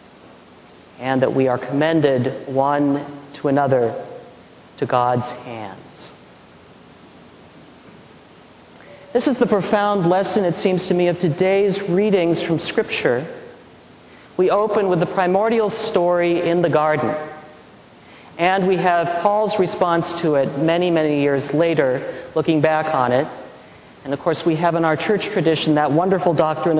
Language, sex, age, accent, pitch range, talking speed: English, male, 40-59, American, 150-190 Hz, 135 wpm